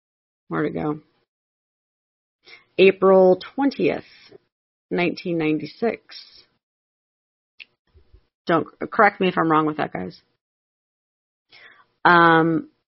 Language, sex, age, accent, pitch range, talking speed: English, female, 30-49, American, 165-195 Hz, 85 wpm